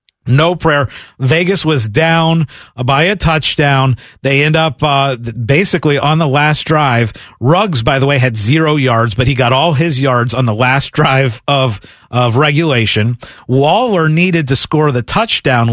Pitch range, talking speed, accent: 130-170 Hz, 165 wpm, American